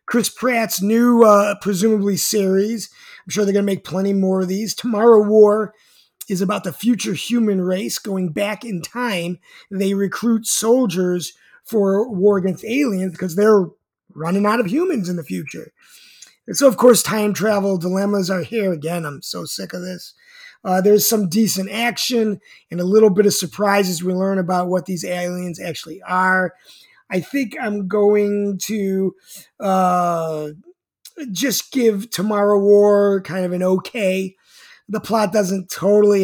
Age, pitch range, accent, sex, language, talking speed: 30-49, 185-220 Hz, American, male, English, 160 wpm